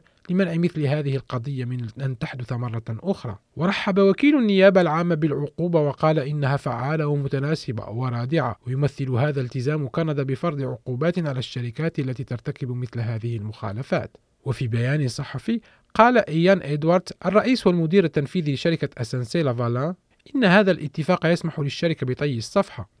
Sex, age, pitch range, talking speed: male, 40-59, 130-170 Hz, 130 wpm